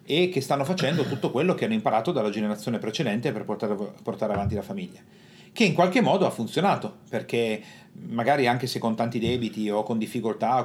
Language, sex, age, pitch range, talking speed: Italian, male, 40-59, 115-175 Hz, 195 wpm